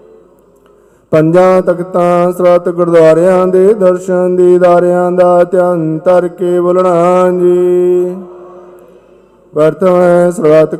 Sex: male